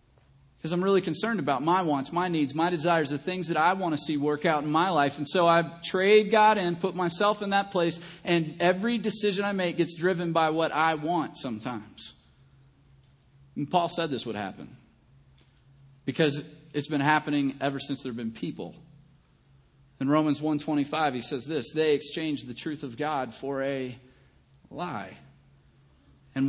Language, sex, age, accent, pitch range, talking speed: English, male, 40-59, American, 135-190 Hz, 175 wpm